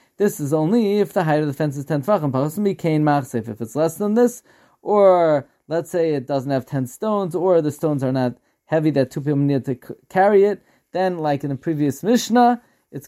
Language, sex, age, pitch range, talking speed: English, male, 20-39, 145-190 Hz, 210 wpm